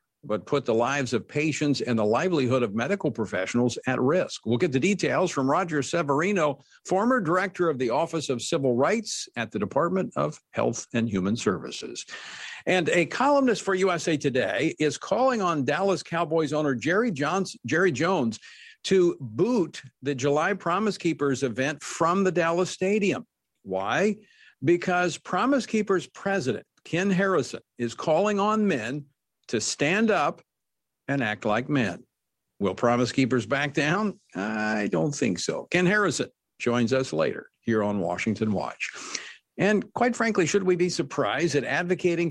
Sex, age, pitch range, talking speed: male, 50-69, 130-190 Hz, 155 wpm